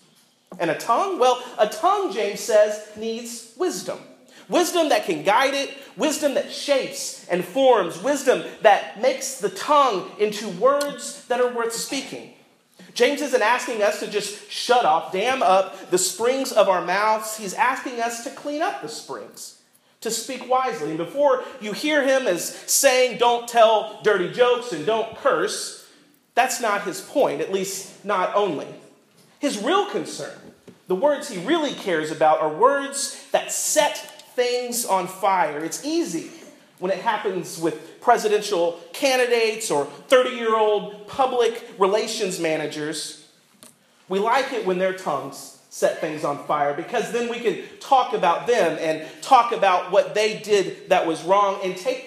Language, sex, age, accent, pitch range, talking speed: English, male, 40-59, American, 190-275 Hz, 155 wpm